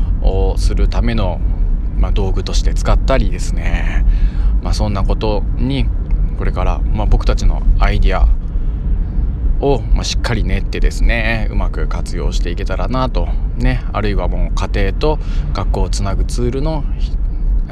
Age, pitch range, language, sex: 20-39, 85-100 Hz, Japanese, male